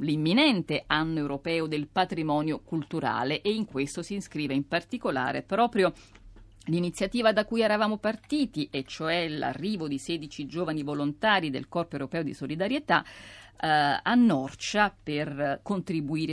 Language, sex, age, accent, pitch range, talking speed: Italian, female, 50-69, native, 145-195 Hz, 130 wpm